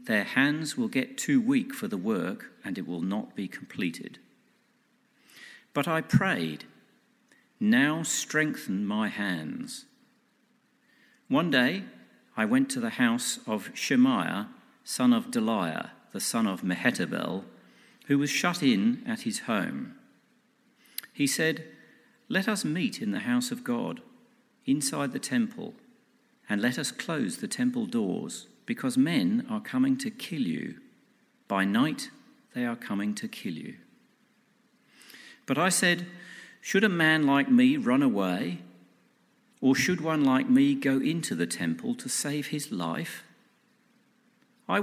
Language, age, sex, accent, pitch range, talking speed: English, 50-69, male, British, 175-250 Hz, 140 wpm